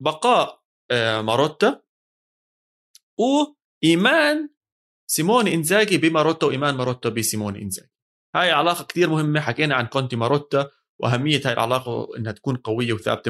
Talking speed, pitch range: 115 wpm, 115-145 Hz